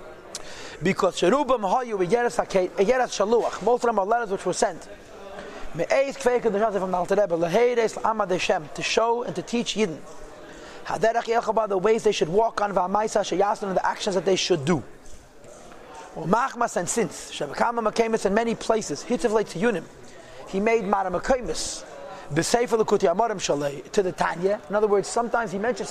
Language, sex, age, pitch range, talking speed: English, male, 30-49, 190-235 Hz, 175 wpm